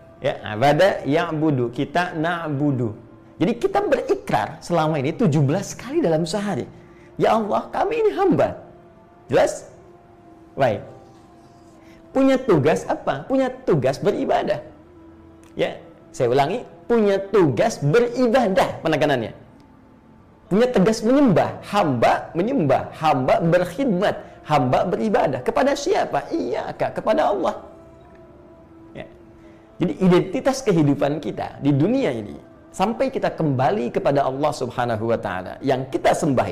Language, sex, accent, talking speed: Indonesian, male, native, 110 wpm